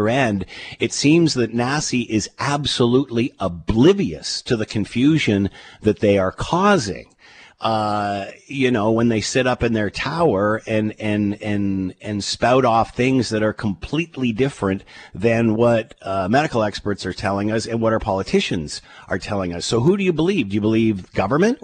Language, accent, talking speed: English, American, 165 wpm